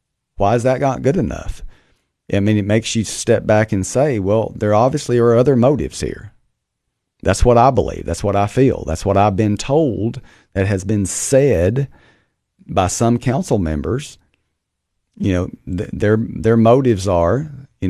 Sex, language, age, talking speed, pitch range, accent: male, English, 40-59, 170 wpm, 95-120 Hz, American